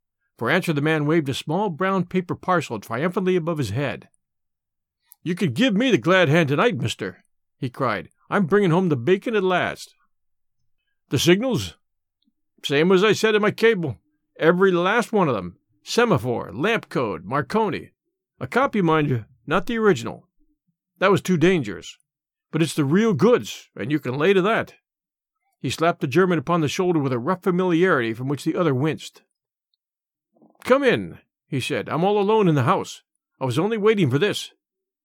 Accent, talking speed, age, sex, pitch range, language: American, 175 wpm, 50-69, male, 150-210 Hz, English